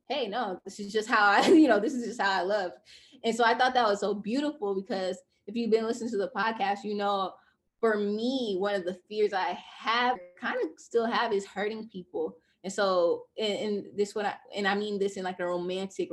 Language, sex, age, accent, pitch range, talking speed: English, female, 10-29, American, 190-235 Hz, 235 wpm